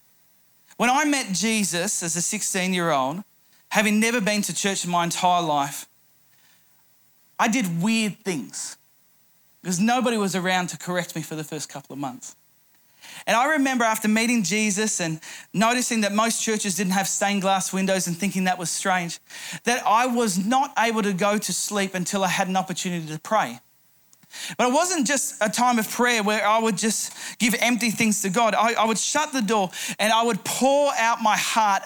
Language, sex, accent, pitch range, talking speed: English, male, Australian, 190-240 Hz, 190 wpm